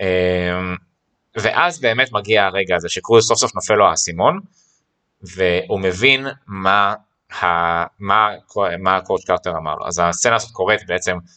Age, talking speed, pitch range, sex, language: 20-39, 125 wpm, 95-135 Hz, male, Hebrew